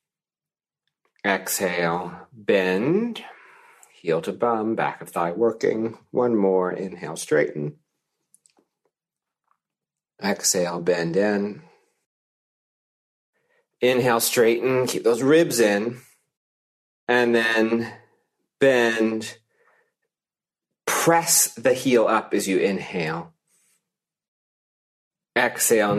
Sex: male